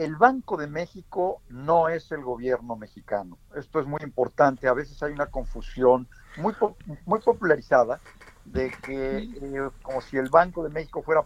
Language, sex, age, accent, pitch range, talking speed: Spanish, male, 50-69, Mexican, 125-165 Hz, 170 wpm